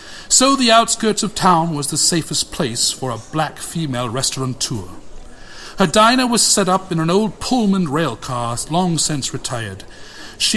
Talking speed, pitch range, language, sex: 165 wpm, 150-245 Hz, English, male